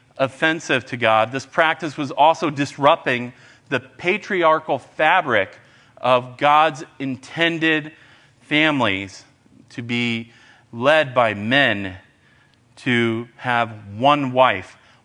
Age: 40-59